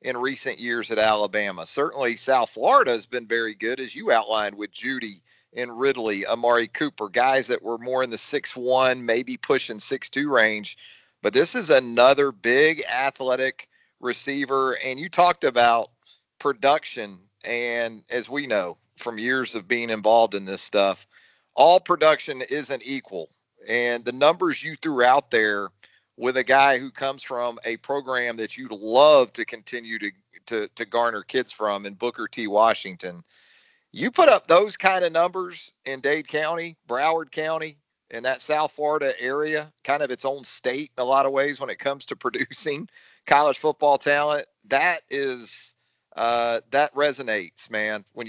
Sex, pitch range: male, 115-145 Hz